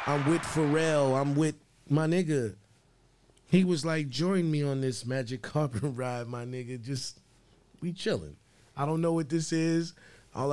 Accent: American